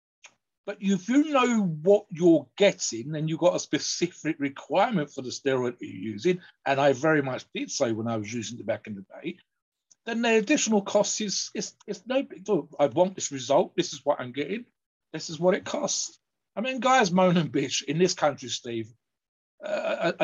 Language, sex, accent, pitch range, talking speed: English, male, British, 135-180 Hz, 200 wpm